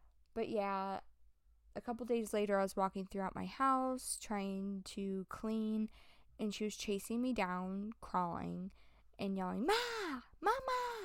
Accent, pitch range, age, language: American, 175-215 Hz, 20-39, English